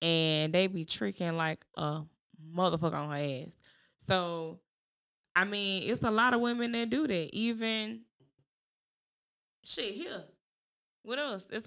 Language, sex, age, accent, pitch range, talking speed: English, female, 20-39, American, 170-200 Hz, 140 wpm